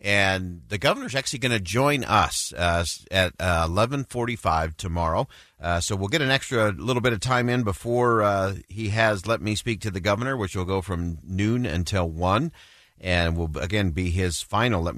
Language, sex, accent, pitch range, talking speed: English, male, American, 85-110 Hz, 190 wpm